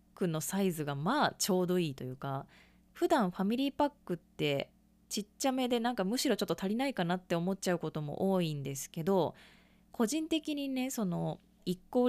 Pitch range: 170-225 Hz